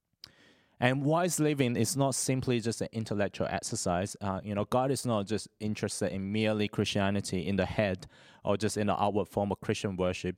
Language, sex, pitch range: English, male, 100-130 Hz